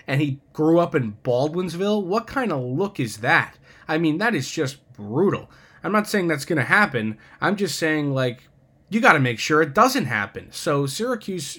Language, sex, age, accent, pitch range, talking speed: English, male, 20-39, American, 125-155 Hz, 200 wpm